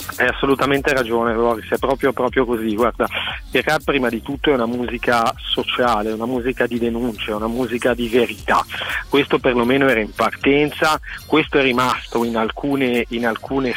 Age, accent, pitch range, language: 40-59, native, 115-135 Hz, Italian